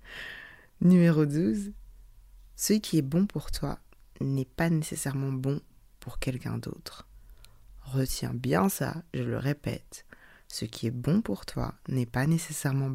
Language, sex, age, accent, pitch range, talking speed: French, female, 20-39, French, 130-170 Hz, 140 wpm